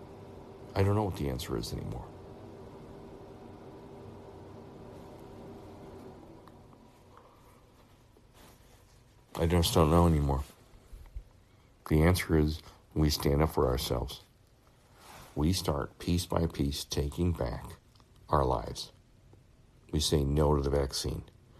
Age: 60-79